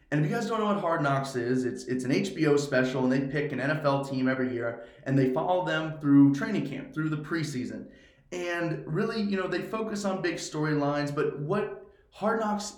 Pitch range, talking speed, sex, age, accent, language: 130-155 Hz, 215 wpm, male, 20-39, American, English